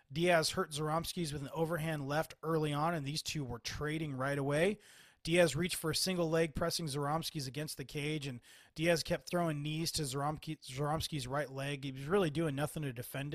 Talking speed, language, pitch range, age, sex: 195 wpm, English, 135-160 Hz, 30-49, male